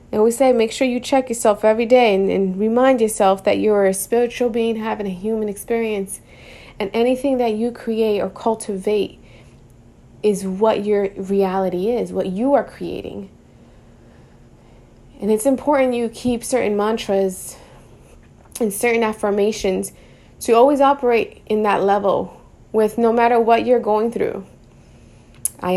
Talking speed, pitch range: 145 wpm, 190-225 Hz